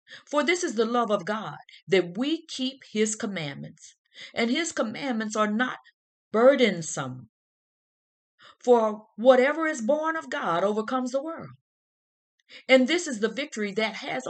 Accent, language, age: American, English, 40-59